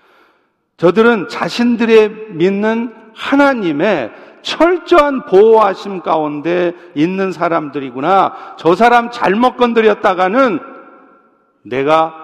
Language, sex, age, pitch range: Korean, male, 50-69, 160-225 Hz